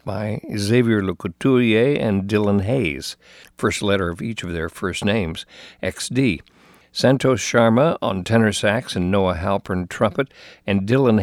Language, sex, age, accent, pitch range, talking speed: English, male, 60-79, American, 90-115 Hz, 140 wpm